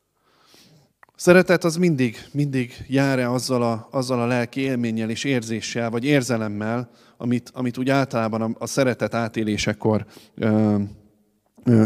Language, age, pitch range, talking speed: Hungarian, 20-39, 115-135 Hz, 125 wpm